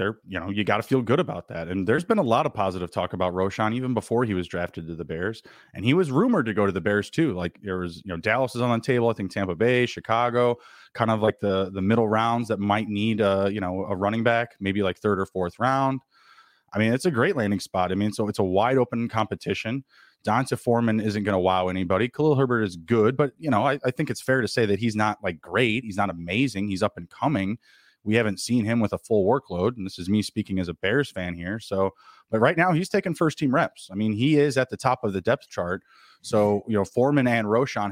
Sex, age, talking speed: male, 30-49, 265 wpm